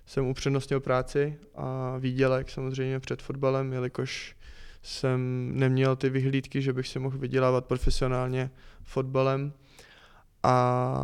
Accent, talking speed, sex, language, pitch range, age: native, 115 wpm, male, Czech, 125-140 Hz, 20-39